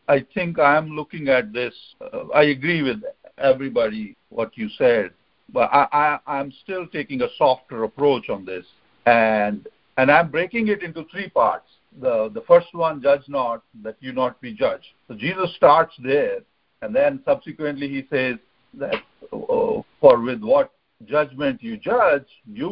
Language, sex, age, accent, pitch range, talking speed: English, male, 60-79, Indian, 140-225 Hz, 165 wpm